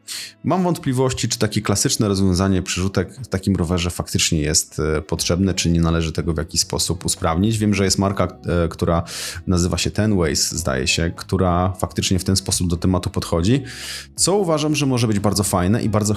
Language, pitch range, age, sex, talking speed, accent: Polish, 85-105 Hz, 30-49, male, 180 wpm, native